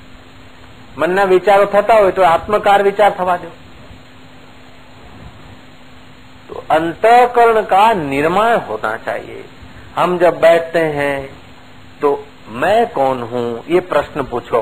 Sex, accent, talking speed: male, native, 105 wpm